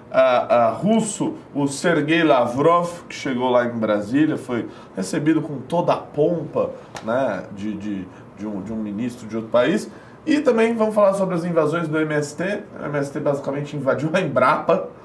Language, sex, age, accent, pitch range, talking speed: Portuguese, male, 20-39, Brazilian, 145-210 Hz, 155 wpm